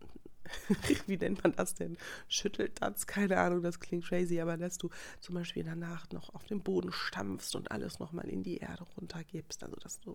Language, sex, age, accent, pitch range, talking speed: German, female, 30-49, German, 150-185 Hz, 190 wpm